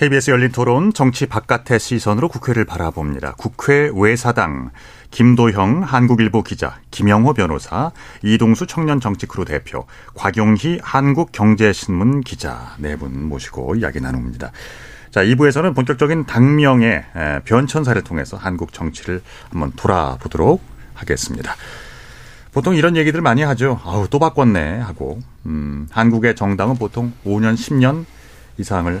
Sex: male